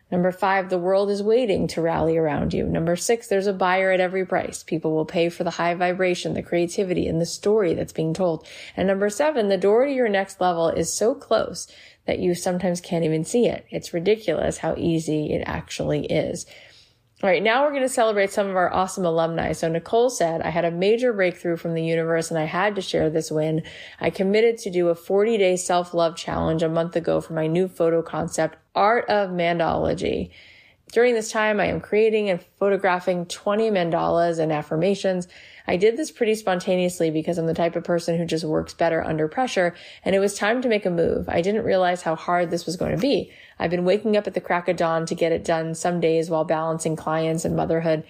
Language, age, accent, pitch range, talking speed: English, 30-49, American, 165-195 Hz, 220 wpm